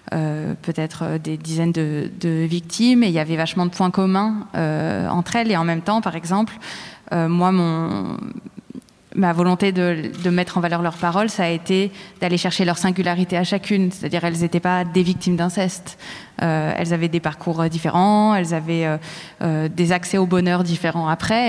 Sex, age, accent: female, 20-39, French